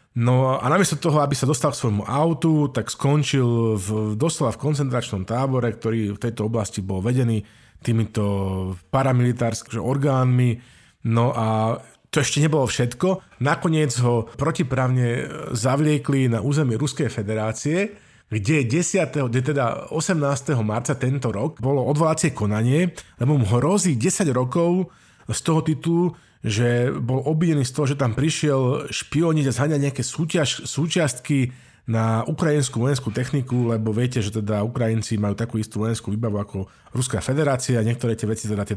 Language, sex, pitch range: Slovak, male, 115-145 Hz